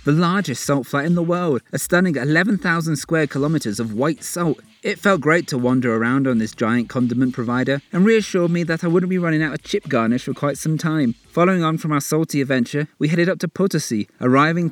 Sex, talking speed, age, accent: male, 220 wpm, 30-49, British